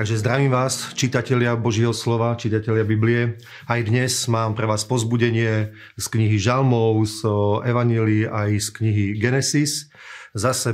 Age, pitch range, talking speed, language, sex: 40-59, 110-120 Hz, 135 wpm, Slovak, male